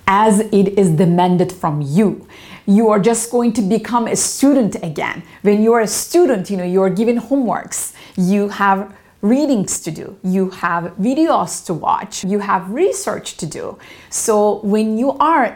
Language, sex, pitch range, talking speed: English, female, 185-240 Hz, 170 wpm